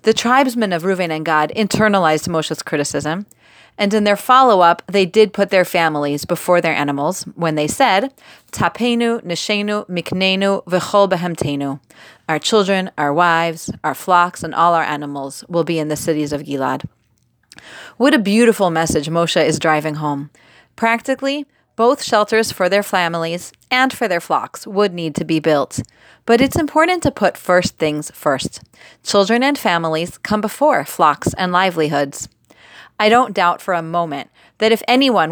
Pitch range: 160-215 Hz